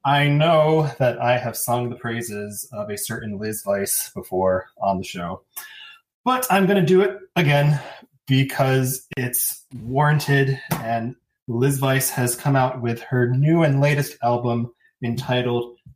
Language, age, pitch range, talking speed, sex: English, 20-39, 115-145 Hz, 150 wpm, male